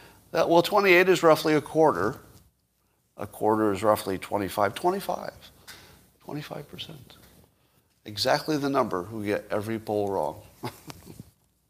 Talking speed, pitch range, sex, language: 110 wpm, 105-150 Hz, male, English